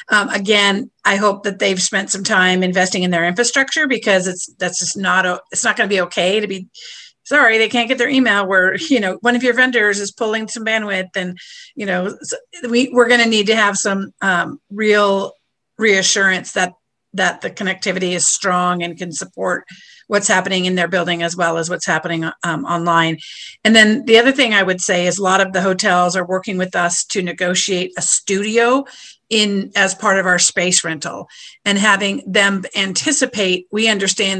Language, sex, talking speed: English, female, 195 wpm